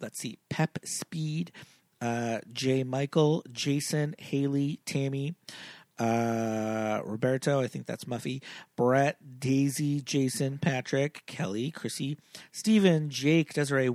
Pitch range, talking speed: 130-165 Hz, 110 wpm